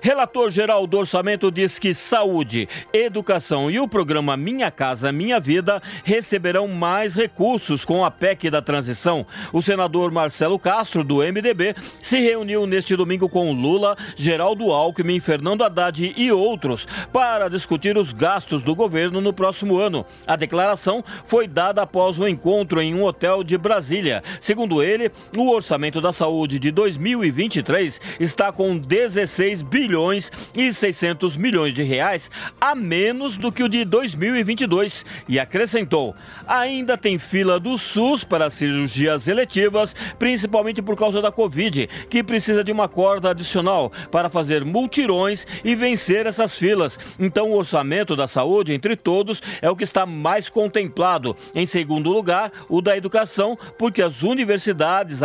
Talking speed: 155 wpm